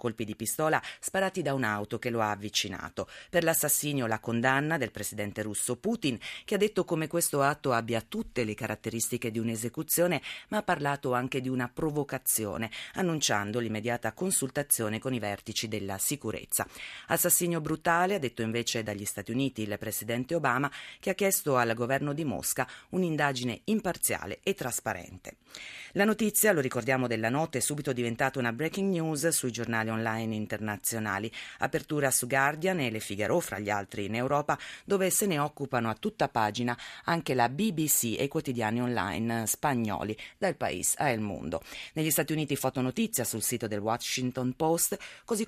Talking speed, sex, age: 165 wpm, female, 40-59